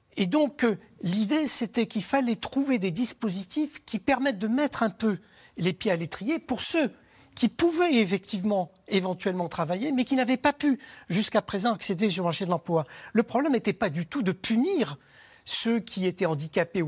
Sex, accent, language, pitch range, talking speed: male, French, French, 170-245 Hz, 180 wpm